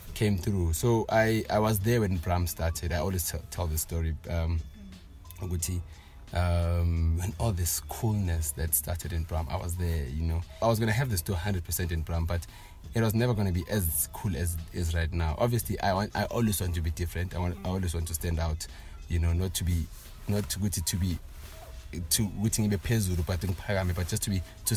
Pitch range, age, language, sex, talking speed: 85-95 Hz, 30-49, English, male, 215 wpm